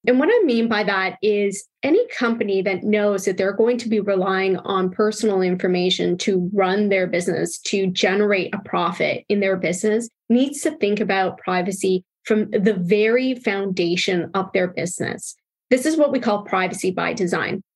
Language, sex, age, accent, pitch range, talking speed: English, female, 20-39, American, 195-235 Hz, 170 wpm